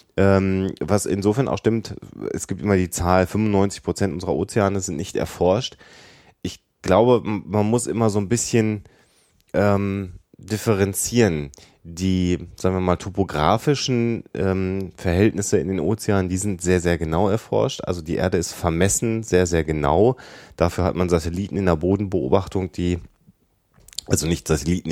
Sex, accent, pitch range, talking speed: male, German, 80-95 Hz, 145 wpm